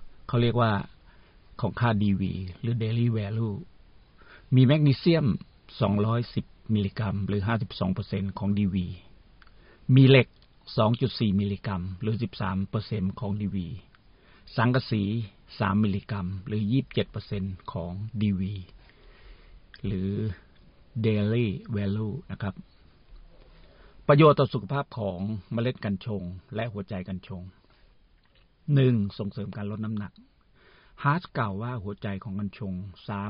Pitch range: 95-120 Hz